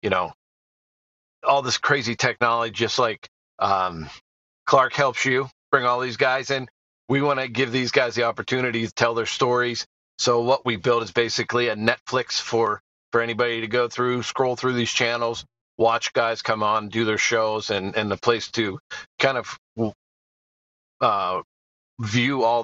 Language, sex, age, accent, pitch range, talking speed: English, male, 40-59, American, 115-130 Hz, 170 wpm